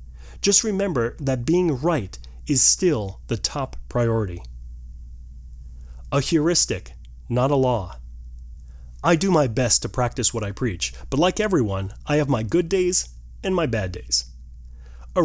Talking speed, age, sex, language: 145 wpm, 30-49, male, English